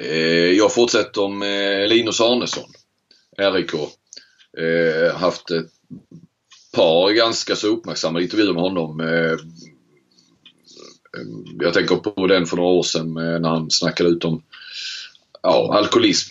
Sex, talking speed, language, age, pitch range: male, 115 wpm, Swedish, 30-49, 80-90 Hz